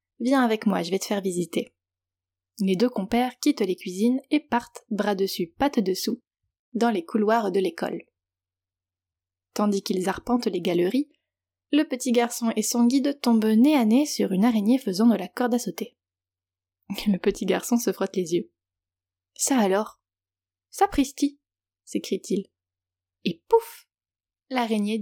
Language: French